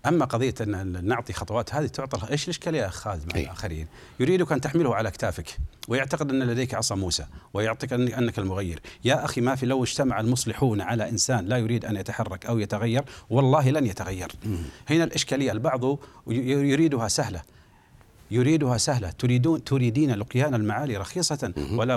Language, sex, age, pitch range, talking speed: Arabic, male, 40-59, 110-140 Hz, 155 wpm